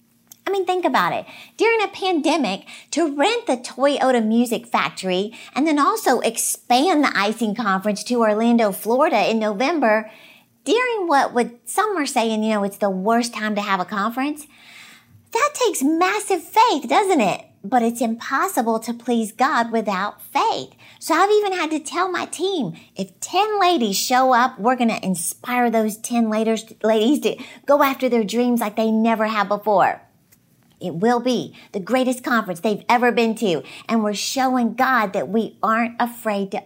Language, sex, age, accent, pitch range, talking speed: English, female, 50-69, American, 215-275 Hz, 170 wpm